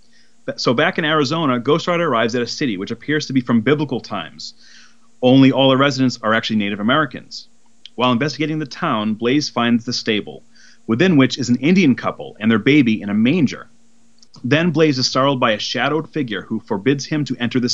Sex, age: male, 30-49